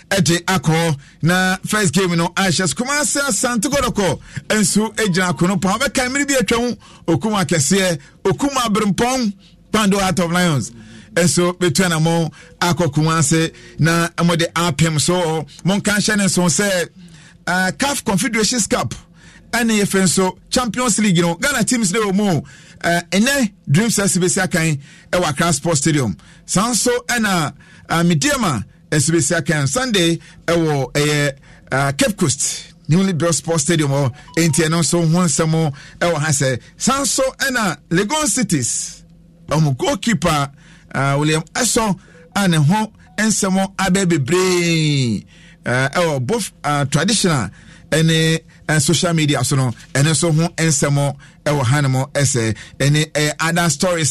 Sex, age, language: male, 50-69, English